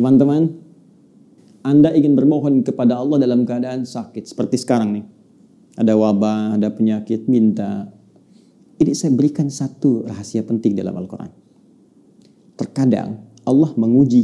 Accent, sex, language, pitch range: native, male, Indonesian, 125-185 Hz